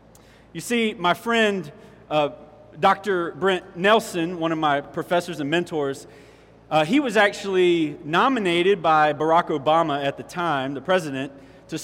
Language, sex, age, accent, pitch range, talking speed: English, male, 30-49, American, 150-185 Hz, 140 wpm